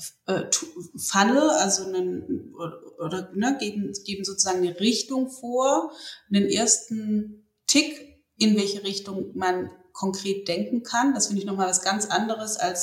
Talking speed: 120 wpm